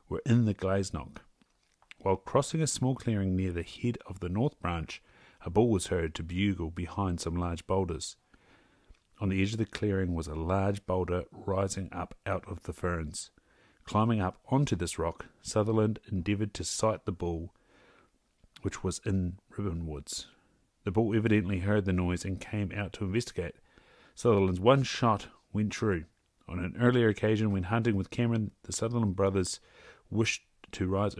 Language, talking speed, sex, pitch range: English, 170 wpm, male, 90-110 Hz